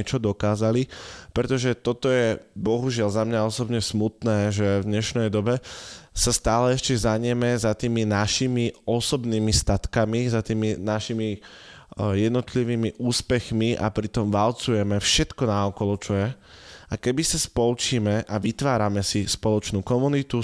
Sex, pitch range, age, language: male, 100-115 Hz, 20-39, Slovak